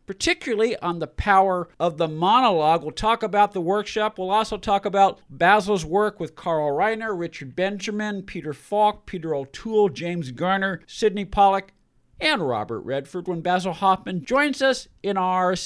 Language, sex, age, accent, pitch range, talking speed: English, male, 50-69, American, 130-185 Hz, 155 wpm